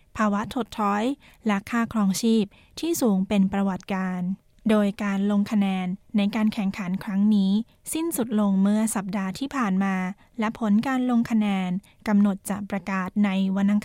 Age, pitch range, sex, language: 20-39, 200-230 Hz, female, Thai